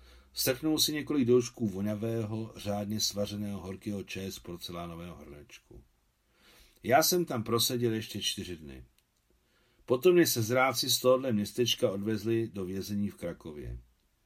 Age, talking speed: 50-69, 130 wpm